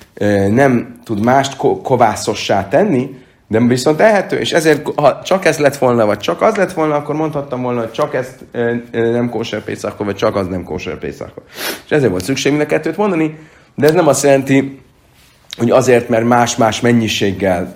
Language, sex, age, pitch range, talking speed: Hungarian, male, 30-49, 105-135 Hz, 175 wpm